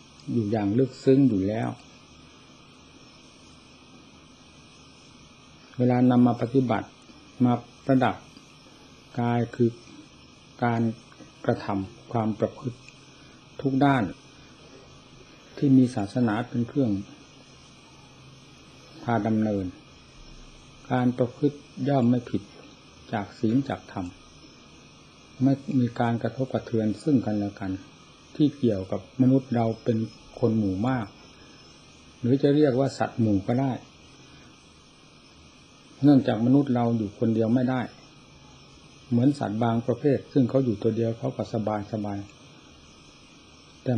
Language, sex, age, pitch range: Thai, male, 60-79, 110-130 Hz